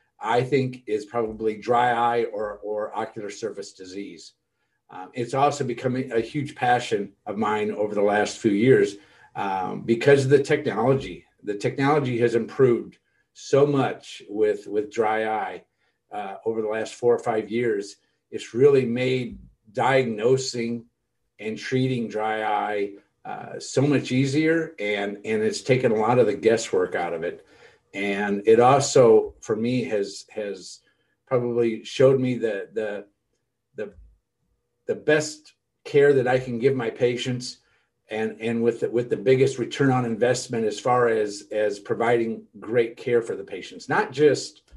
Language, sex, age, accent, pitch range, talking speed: English, male, 50-69, American, 110-140 Hz, 155 wpm